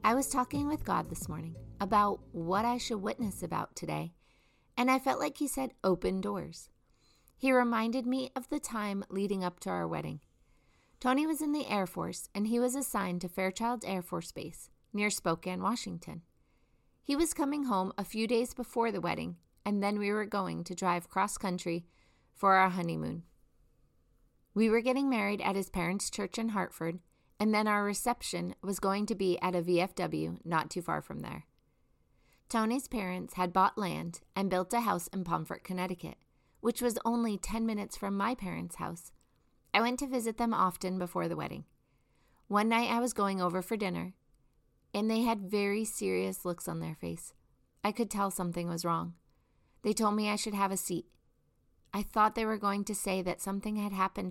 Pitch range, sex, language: 180-230 Hz, female, English